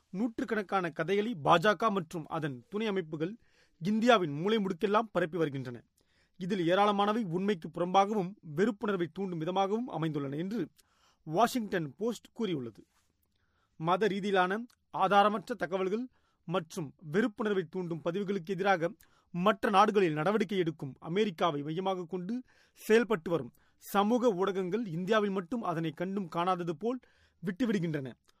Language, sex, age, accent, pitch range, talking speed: Tamil, male, 30-49, native, 170-210 Hz, 110 wpm